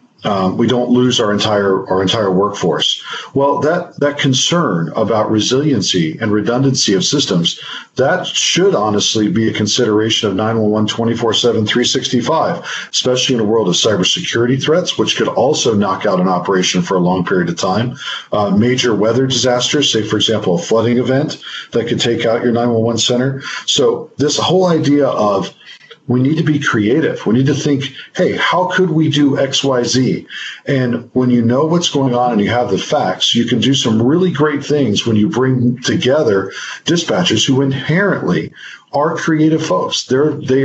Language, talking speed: English, 170 wpm